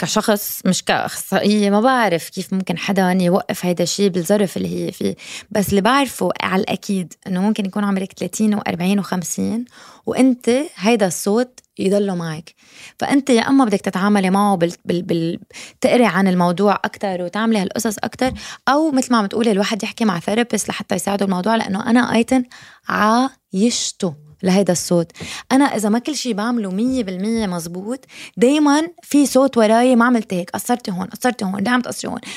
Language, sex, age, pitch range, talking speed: Arabic, female, 20-39, 190-245 Hz, 160 wpm